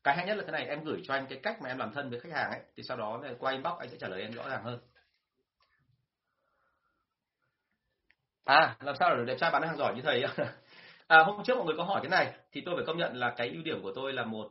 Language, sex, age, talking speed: Vietnamese, male, 30-49, 275 wpm